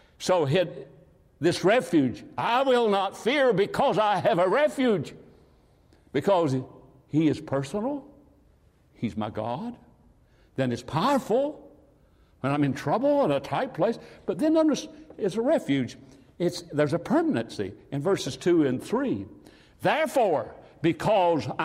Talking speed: 130 wpm